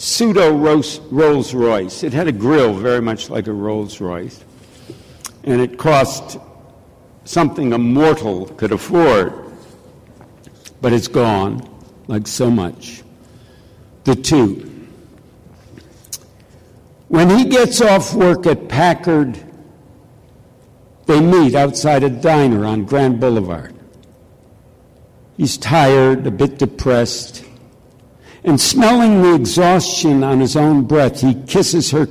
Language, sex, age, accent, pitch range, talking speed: English, male, 60-79, American, 120-165 Hz, 110 wpm